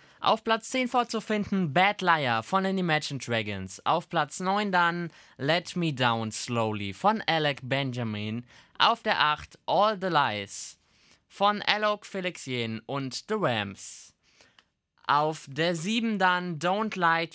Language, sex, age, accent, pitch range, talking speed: German, male, 20-39, German, 120-190 Hz, 140 wpm